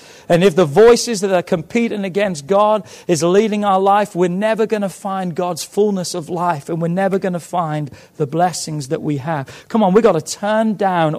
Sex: male